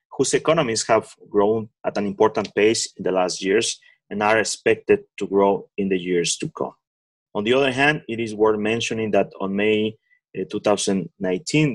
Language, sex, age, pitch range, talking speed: English, male, 30-49, 100-120 Hz, 175 wpm